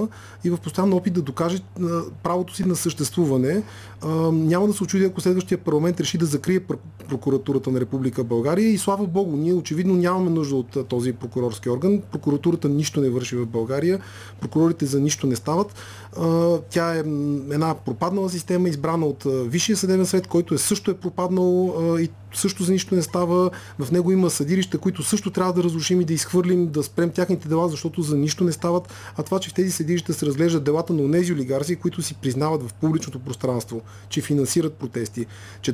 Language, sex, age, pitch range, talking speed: Bulgarian, male, 30-49, 130-180 Hz, 180 wpm